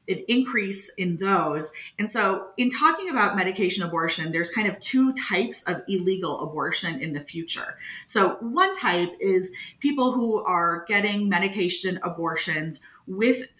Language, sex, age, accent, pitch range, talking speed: English, female, 30-49, American, 160-205 Hz, 145 wpm